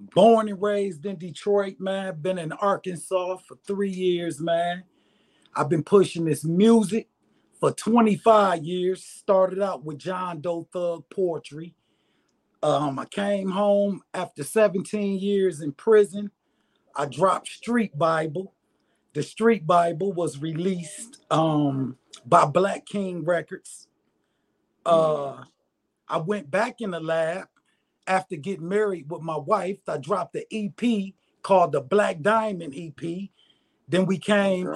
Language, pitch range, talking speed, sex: English, 170-205 Hz, 130 wpm, male